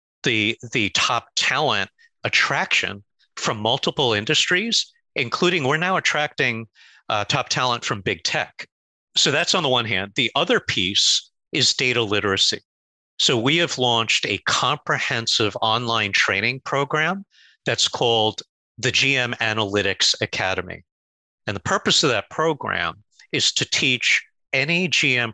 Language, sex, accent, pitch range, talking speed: English, male, American, 100-135 Hz, 135 wpm